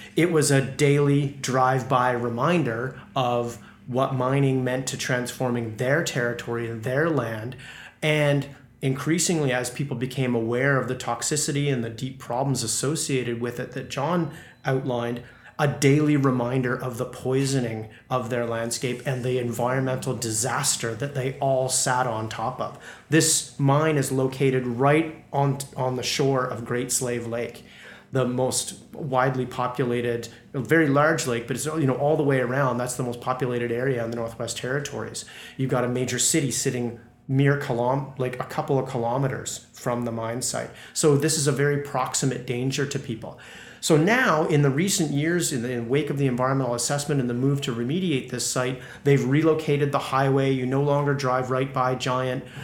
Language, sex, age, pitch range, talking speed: English, male, 30-49, 125-140 Hz, 170 wpm